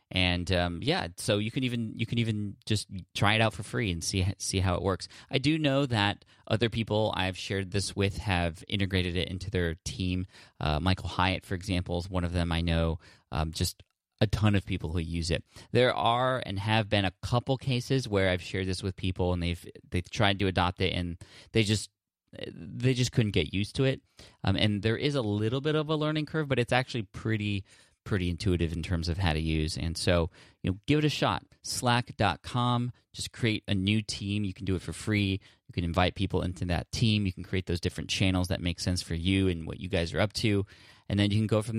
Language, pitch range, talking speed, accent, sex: English, 90-110 Hz, 235 wpm, American, male